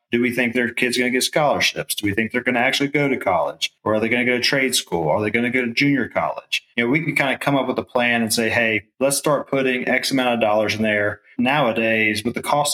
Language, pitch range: English, 115-130 Hz